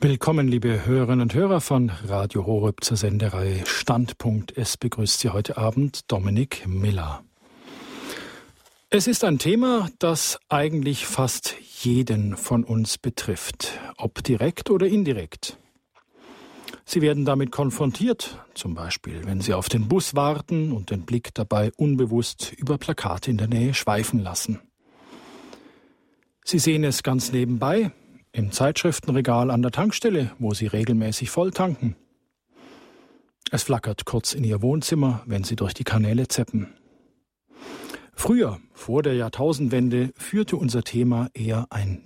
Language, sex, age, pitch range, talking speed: German, male, 50-69, 110-145 Hz, 135 wpm